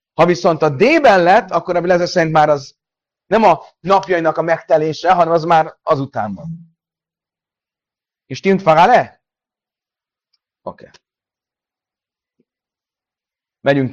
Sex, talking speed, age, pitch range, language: male, 120 wpm, 30-49, 125-170 Hz, Hungarian